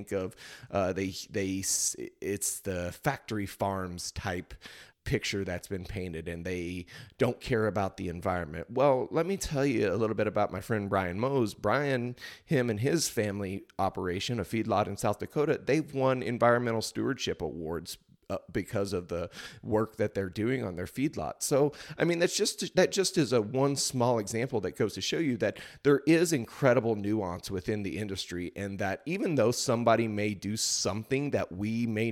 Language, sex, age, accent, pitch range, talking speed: English, male, 30-49, American, 95-115 Hz, 175 wpm